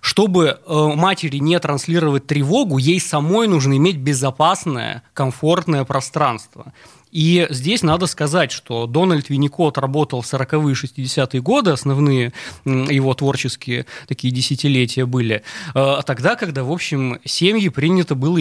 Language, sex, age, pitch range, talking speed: Russian, male, 20-39, 135-170 Hz, 120 wpm